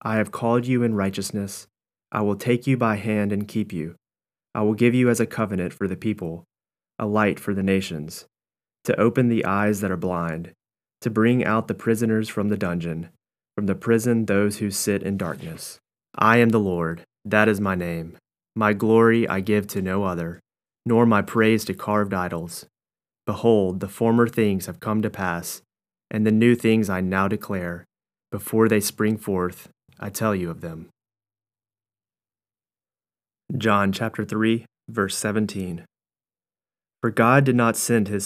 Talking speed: 170 wpm